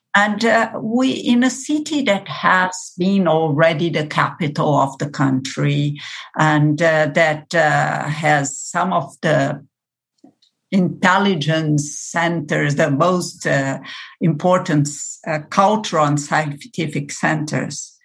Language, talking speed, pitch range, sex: English, 115 wpm, 150-220 Hz, female